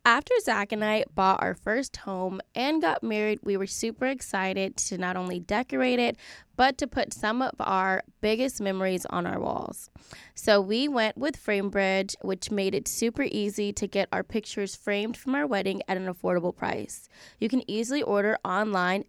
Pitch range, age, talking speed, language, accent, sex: 190-230 Hz, 10-29, 180 wpm, English, American, female